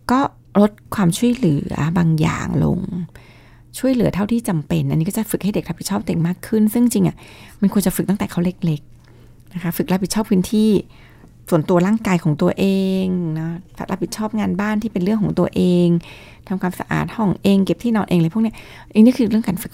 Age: 20-39